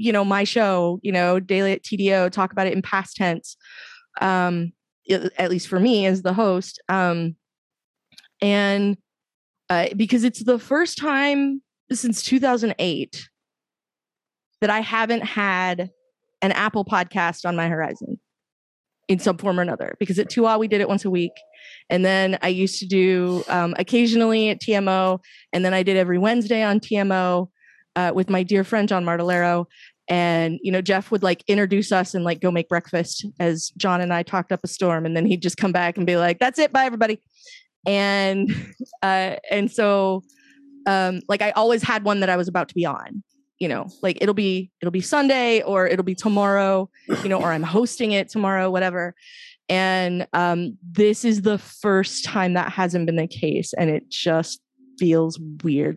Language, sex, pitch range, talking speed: English, female, 180-215 Hz, 185 wpm